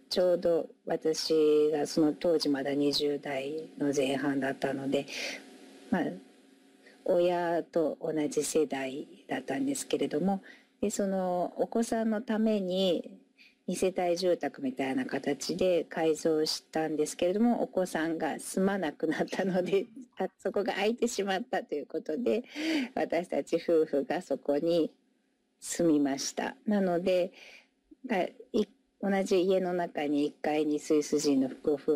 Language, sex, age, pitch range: Japanese, female, 50-69, 145-200 Hz